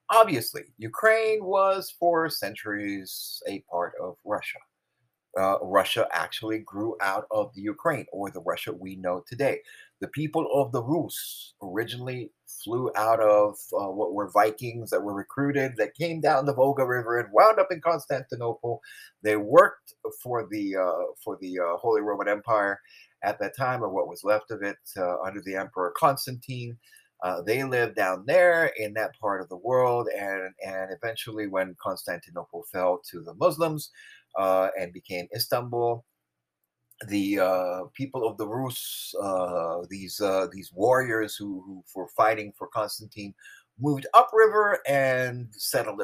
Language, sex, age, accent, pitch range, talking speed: English, male, 30-49, American, 95-135 Hz, 155 wpm